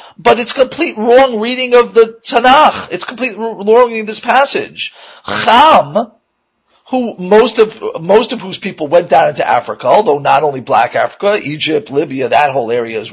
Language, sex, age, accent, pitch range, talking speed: English, male, 40-59, American, 150-250 Hz, 175 wpm